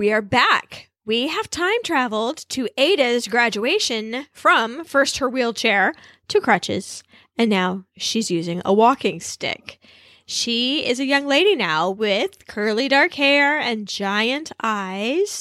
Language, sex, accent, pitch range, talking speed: English, female, American, 215-285 Hz, 140 wpm